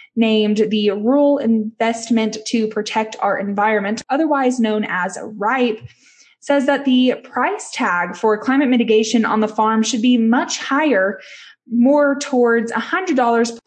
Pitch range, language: 215-255 Hz, English